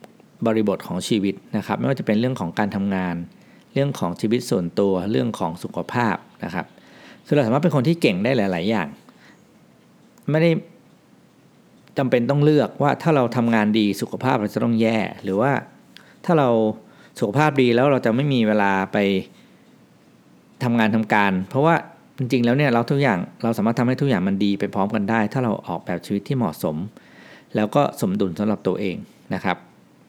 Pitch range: 100-135 Hz